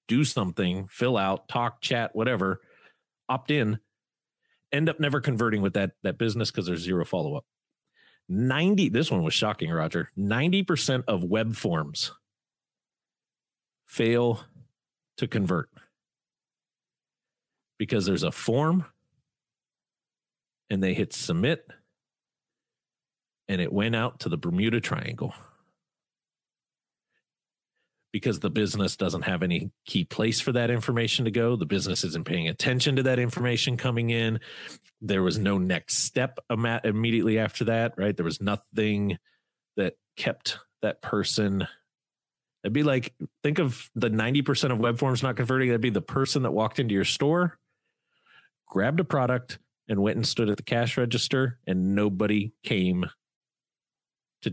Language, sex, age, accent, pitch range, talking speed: English, male, 40-59, American, 100-130 Hz, 140 wpm